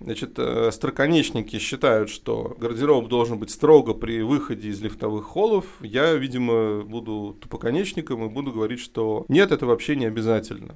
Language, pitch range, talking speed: Russian, 110-135 Hz, 145 wpm